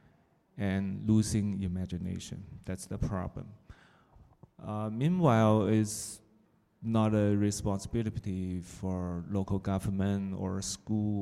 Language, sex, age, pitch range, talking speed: Italian, male, 30-49, 95-110 Hz, 90 wpm